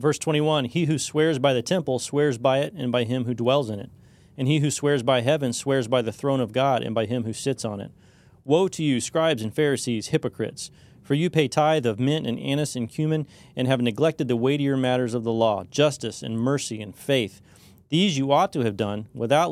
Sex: male